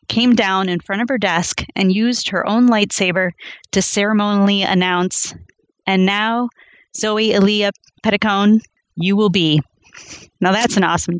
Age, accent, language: 30-49, American, English